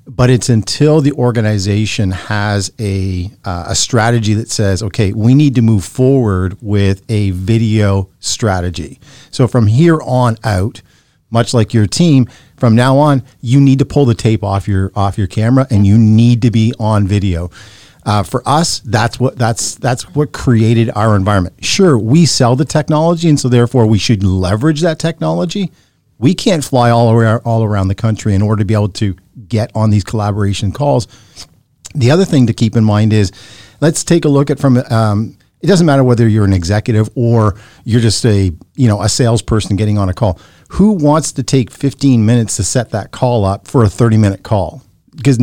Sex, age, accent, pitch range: male, 50-69, American, 105-130 Hz